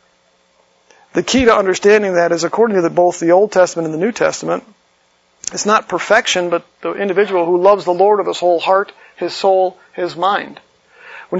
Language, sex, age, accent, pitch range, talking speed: English, male, 50-69, American, 165-195 Hz, 190 wpm